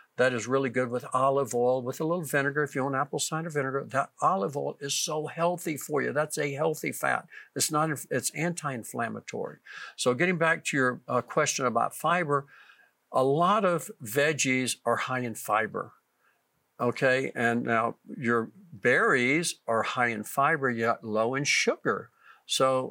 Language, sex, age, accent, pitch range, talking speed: English, male, 60-79, American, 120-145 Hz, 170 wpm